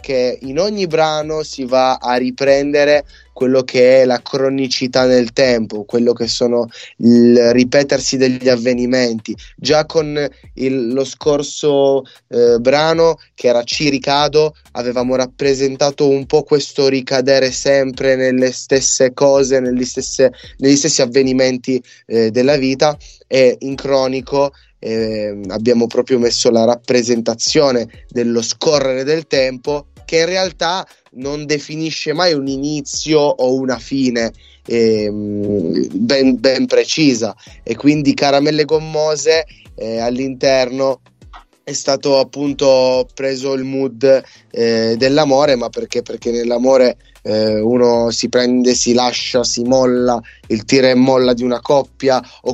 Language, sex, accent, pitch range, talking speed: Italian, male, native, 125-145 Hz, 125 wpm